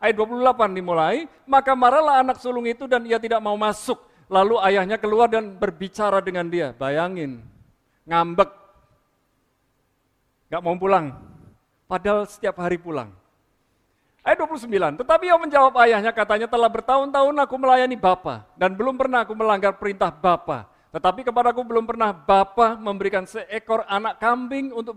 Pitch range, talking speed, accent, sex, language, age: 165-230 Hz, 140 wpm, native, male, Indonesian, 50-69